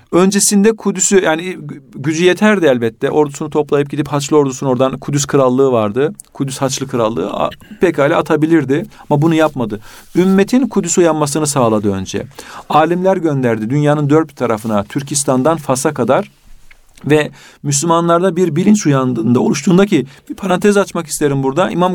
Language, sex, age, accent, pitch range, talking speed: Turkish, male, 50-69, native, 135-180 Hz, 135 wpm